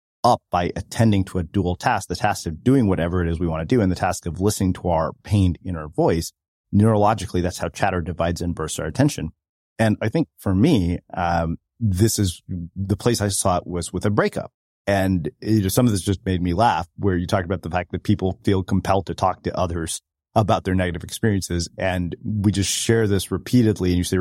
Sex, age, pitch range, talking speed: male, 30-49, 90-110 Hz, 220 wpm